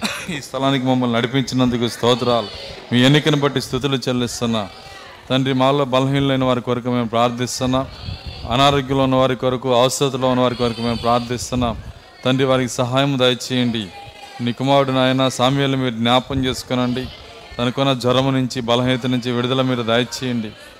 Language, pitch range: Telugu, 120-135 Hz